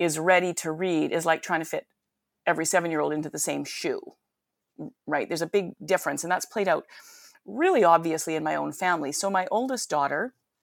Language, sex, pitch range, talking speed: English, female, 160-205 Hz, 190 wpm